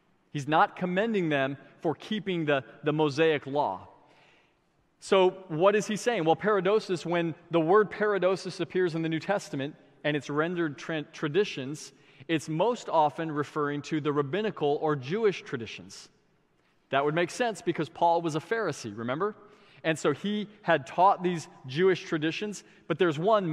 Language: English